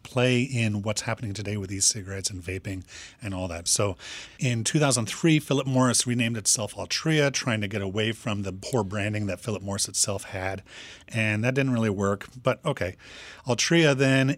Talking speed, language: 175 wpm, English